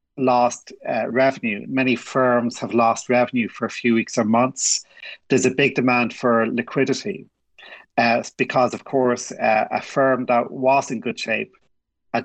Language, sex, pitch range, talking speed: English, male, 115-135 Hz, 165 wpm